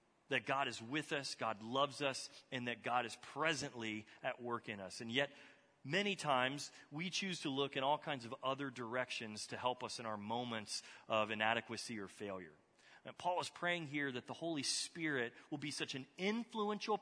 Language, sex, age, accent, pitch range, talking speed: English, male, 30-49, American, 120-150 Hz, 195 wpm